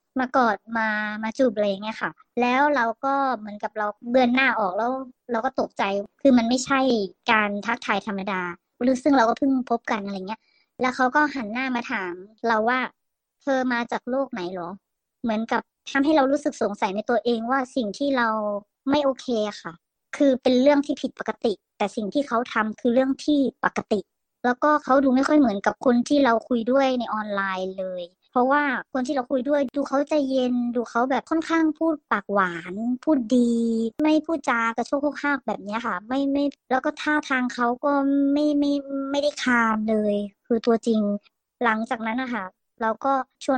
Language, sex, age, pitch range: Thai, male, 20-39, 220-275 Hz